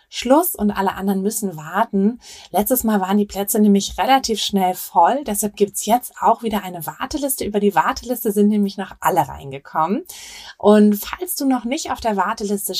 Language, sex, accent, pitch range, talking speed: German, female, German, 195-235 Hz, 185 wpm